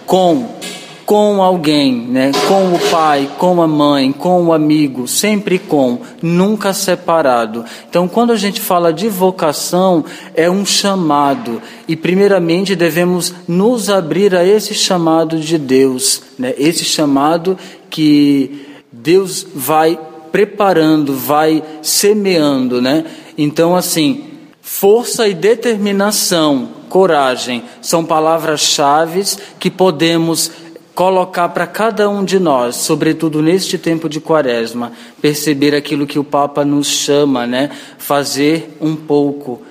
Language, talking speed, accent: Portuguese, 120 wpm, Brazilian